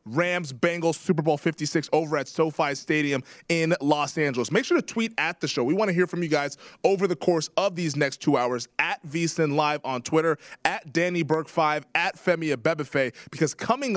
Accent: American